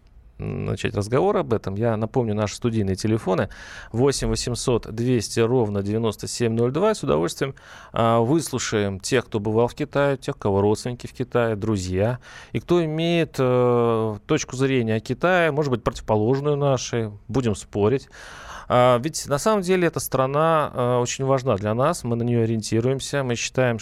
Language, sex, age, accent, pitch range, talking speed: Russian, male, 30-49, native, 105-135 Hz, 140 wpm